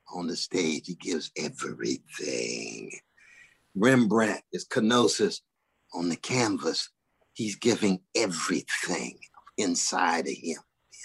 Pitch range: 100-160 Hz